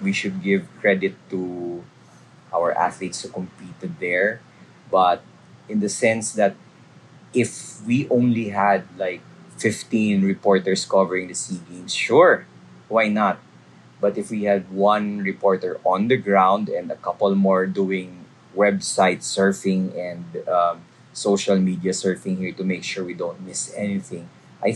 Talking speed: 145 wpm